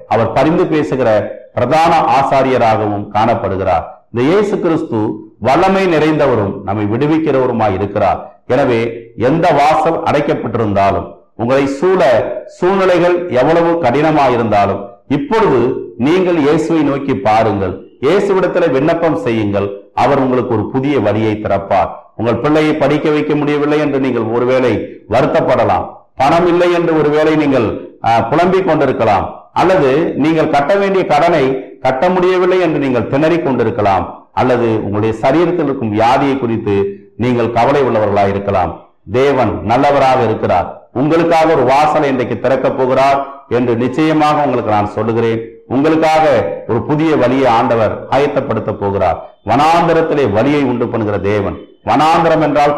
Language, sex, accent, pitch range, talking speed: Tamil, male, native, 115-160 Hz, 115 wpm